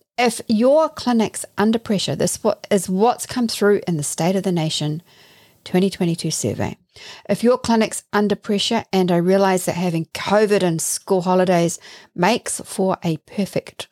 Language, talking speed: English, 155 wpm